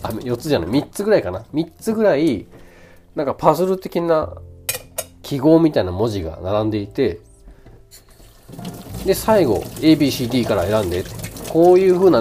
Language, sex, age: Japanese, male, 40-59